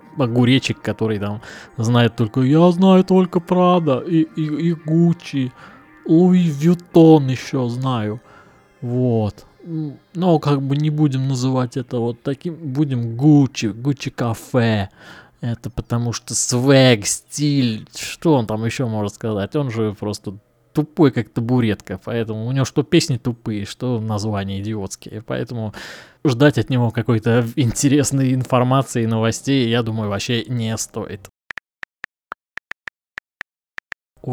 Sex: male